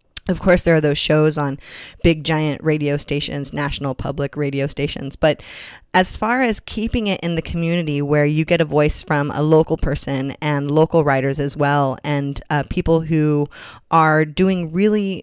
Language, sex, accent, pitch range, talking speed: English, female, American, 145-175 Hz, 175 wpm